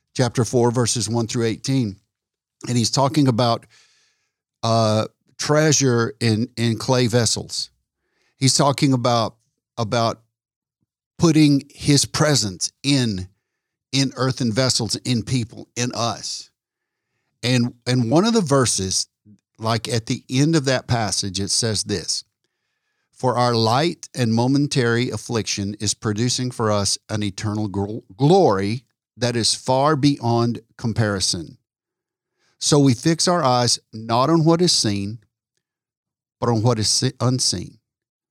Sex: male